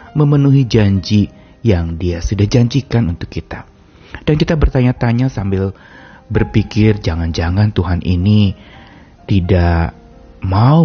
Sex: male